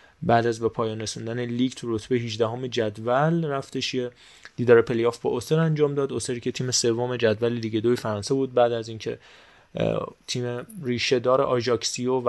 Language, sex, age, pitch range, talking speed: Persian, male, 20-39, 115-135 Hz, 160 wpm